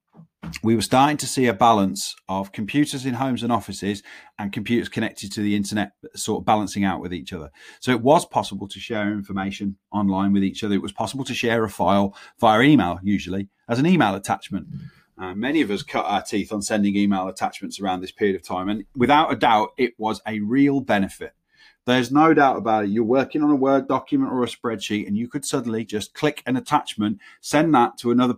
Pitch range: 100-125 Hz